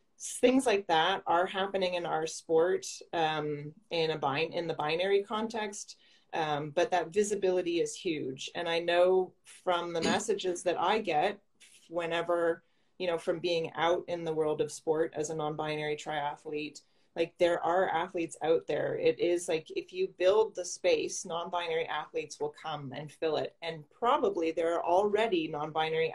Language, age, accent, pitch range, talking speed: English, 30-49, American, 160-200 Hz, 175 wpm